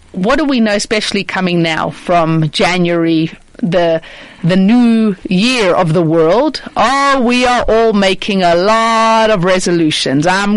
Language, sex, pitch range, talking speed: English, female, 185-250 Hz, 150 wpm